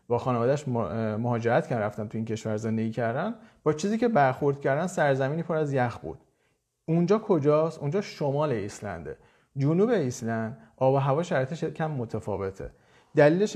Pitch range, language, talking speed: 120-155 Hz, Persian, 150 wpm